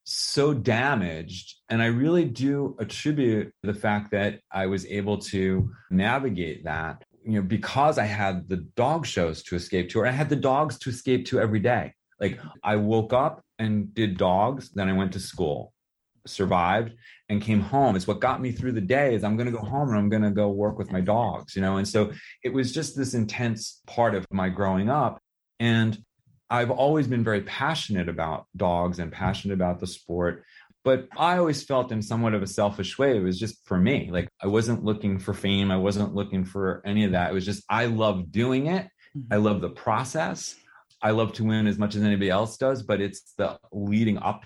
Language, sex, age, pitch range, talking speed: English, male, 30-49, 95-120 Hz, 210 wpm